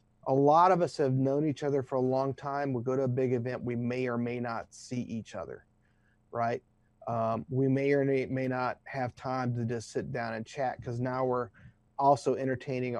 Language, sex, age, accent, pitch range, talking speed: English, male, 40-59, American, 120-150 Hz, 210 wpm